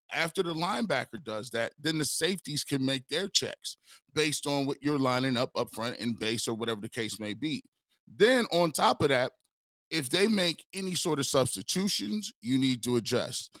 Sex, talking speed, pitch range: male, 195 wpm, 125-160 Hz